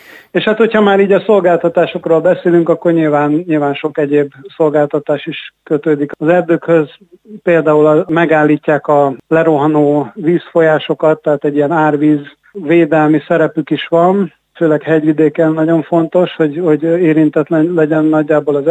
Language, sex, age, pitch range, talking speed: Hungarian, male, 50-69, 150-165 Hz, 130 wpm